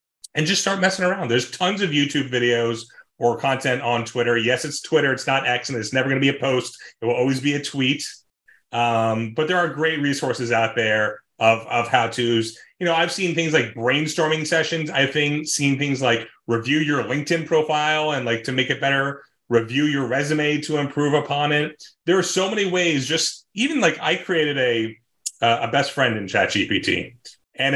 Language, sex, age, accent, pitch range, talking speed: English, male, 30-49, American, 120-155 Hz, 195 wpm